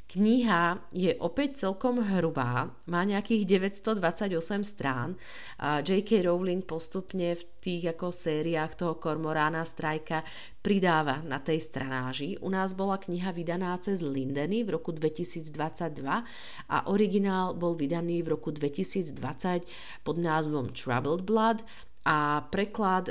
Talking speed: 120 wpm